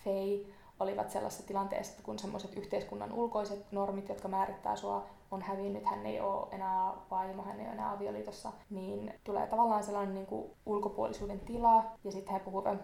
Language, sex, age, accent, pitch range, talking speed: Finnish, female, 20-39, native, 195-225 Hz, 170 wpm